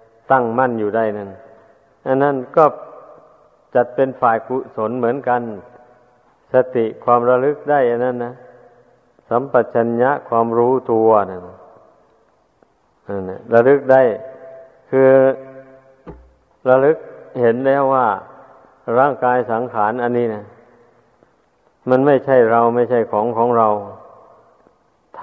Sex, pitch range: male, 115-130 Hz